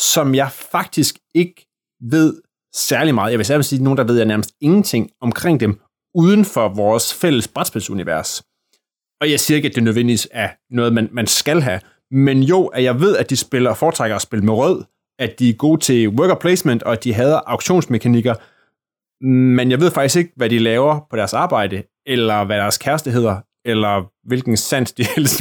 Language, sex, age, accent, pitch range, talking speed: Danish, male, 30-49, native, 115-160 Hz, 205 wpm